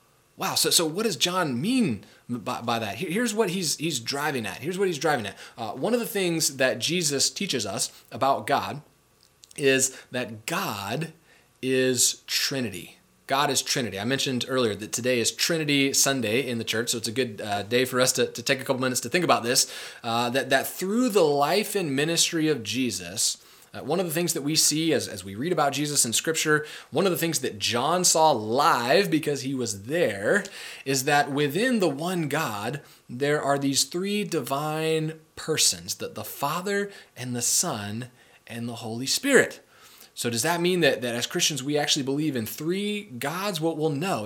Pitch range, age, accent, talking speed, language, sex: 120-165 Hz, 20-39, American, 200 wpm, English, male